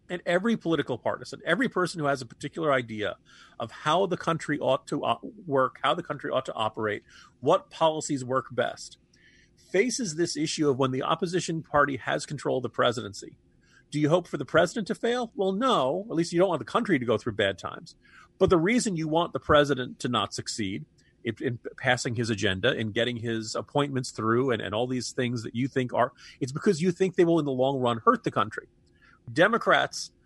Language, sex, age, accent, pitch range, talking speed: English, male, 40-59, American, 130-180 Hz, 210 wpm